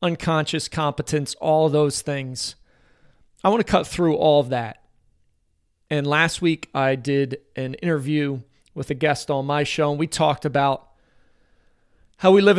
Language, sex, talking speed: English, male, 155 wpm